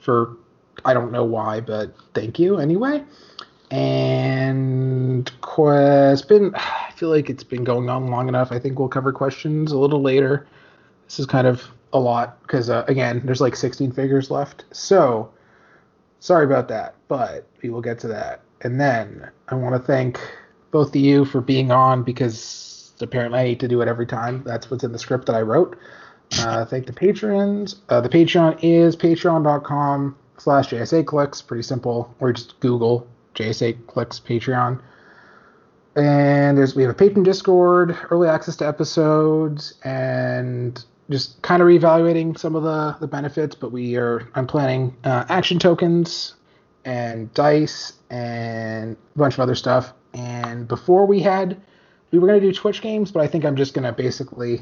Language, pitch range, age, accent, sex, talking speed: English, 120-155 Hz, 30-49, American, male, 170 wpm